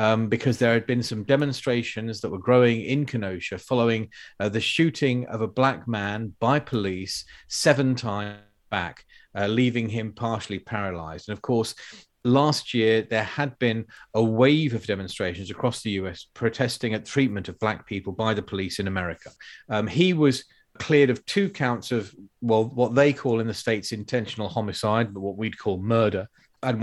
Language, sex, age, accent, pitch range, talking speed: English, male, 40-59, British, 105-130 Hz, 175 wpm